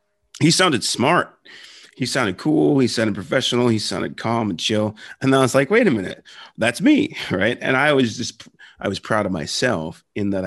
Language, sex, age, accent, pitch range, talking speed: English, male, 30-49, American, 90-110 Hz, 205 wpm